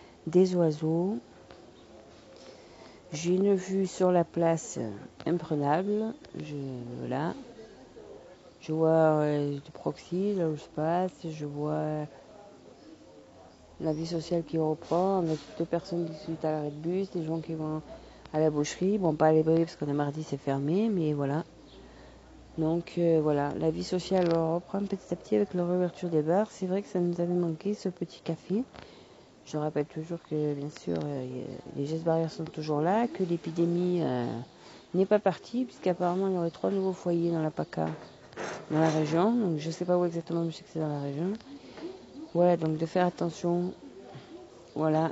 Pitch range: 155-185 Hz